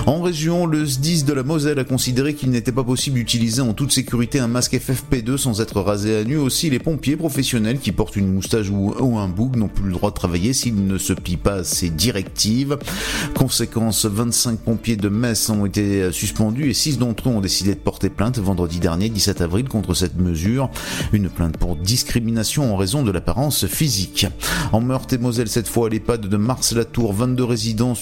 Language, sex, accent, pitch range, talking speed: French, male, French, 100-125 Hz, 205 wpm